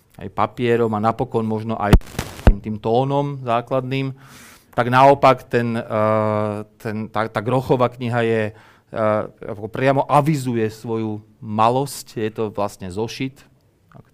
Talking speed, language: 115 wpm, Slovak